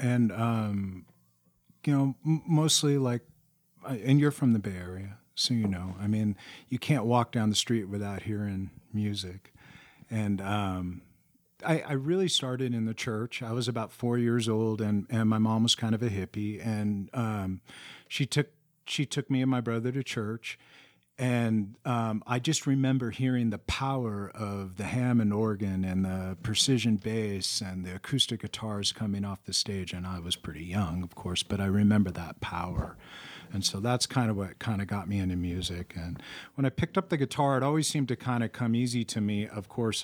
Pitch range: 95-125 Hz